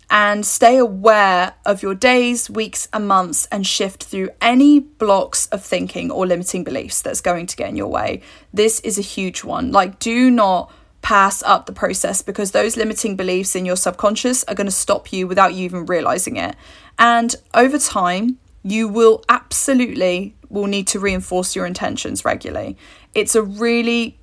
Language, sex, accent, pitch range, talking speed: English, female, British, 200-250 Hz, 175 wpm